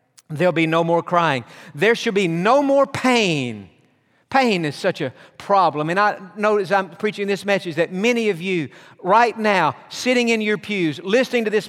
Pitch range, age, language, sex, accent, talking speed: 160-210 Hz, 50-69, English, male, American, 185 wpm